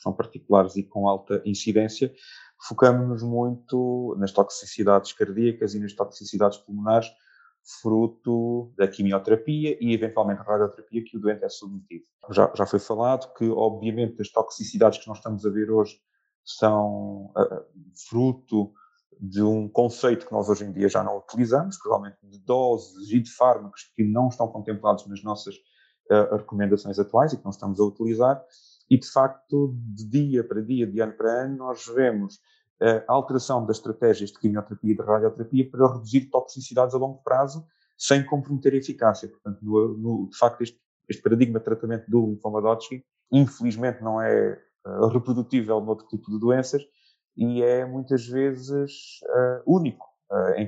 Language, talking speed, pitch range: Portuguese, 160 wpm, 105-125 Hz